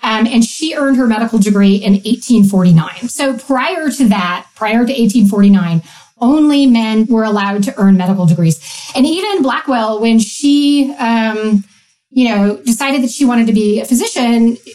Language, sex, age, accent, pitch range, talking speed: English, female, 40-59, American, 210-265 Hz, 165 wpm